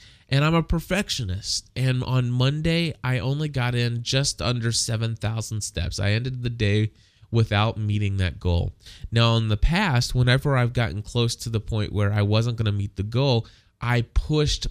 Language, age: English, 20-39